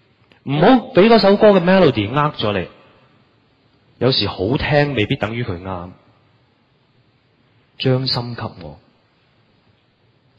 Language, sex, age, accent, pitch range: Chinese, male, 30-49, native, 110-140 Hz